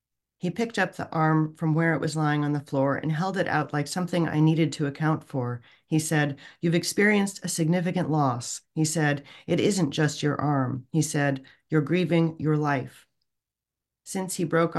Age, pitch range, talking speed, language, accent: 40-59, 135-165 Hz, 190 wpm, English, American